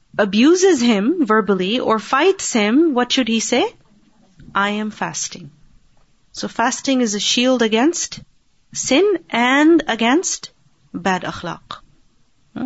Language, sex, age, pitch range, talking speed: Urdu, female, 30-49, 190-225 Hz, 115 wpm